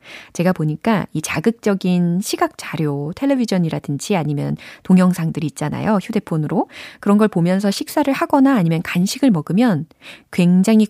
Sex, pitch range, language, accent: female, 160-230 Hz, Korean, native